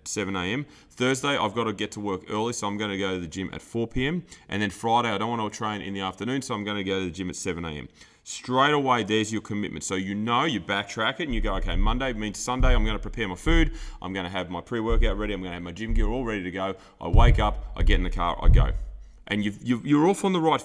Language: English